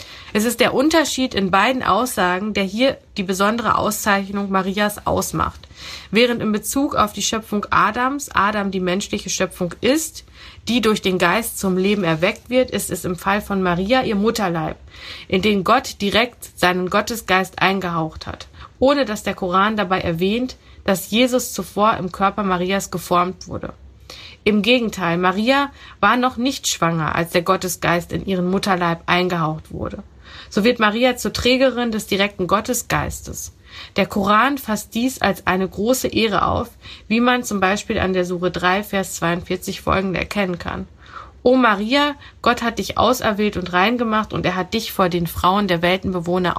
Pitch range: 185-225 Hz